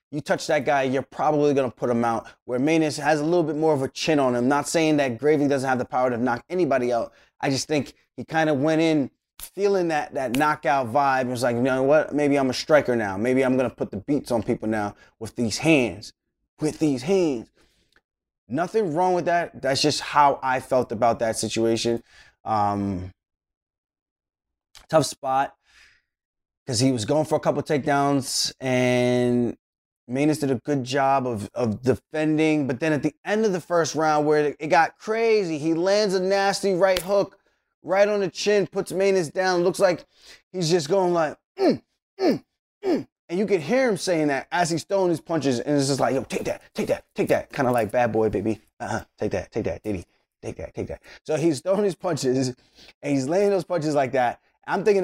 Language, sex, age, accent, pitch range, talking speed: English, male, 20-39, American, 125-175 Hz, 215 wpm